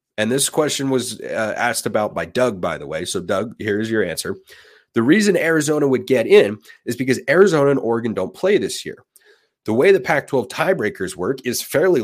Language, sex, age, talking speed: English, male, 30-49, 205 wpm